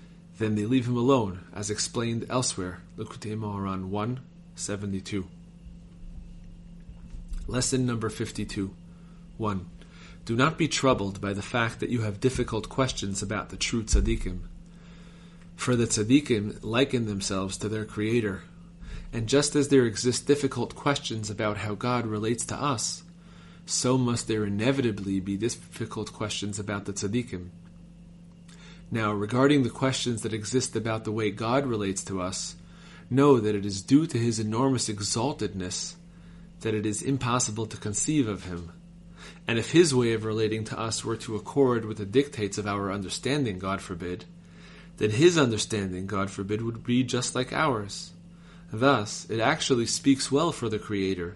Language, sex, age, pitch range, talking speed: English, male, 30-49, 100-135 Hz, 150 wpm